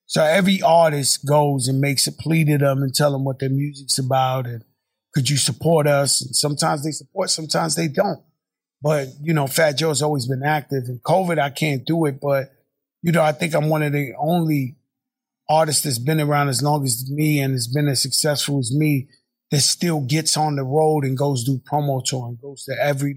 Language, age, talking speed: English, 30-49, 215 wpm